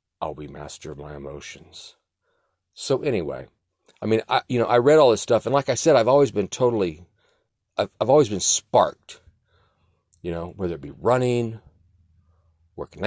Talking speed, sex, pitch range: 175 wpm, male, 90-120 Hz